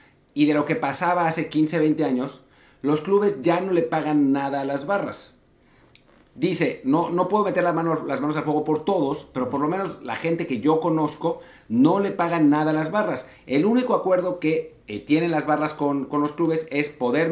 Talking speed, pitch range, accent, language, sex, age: 210 wpm, 140-180 Hz, Mexican, Spanish, male, 50-69